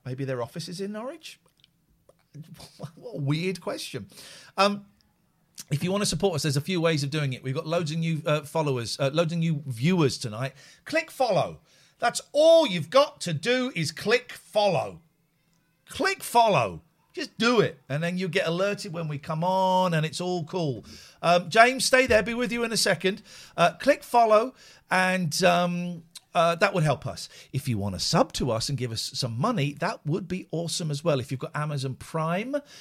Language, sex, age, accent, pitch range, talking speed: English, male, 40-59, British, 130-180 Hz, 200 wpm